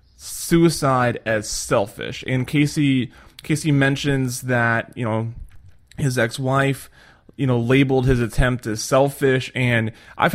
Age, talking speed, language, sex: 20-39, 120 wpm, English, male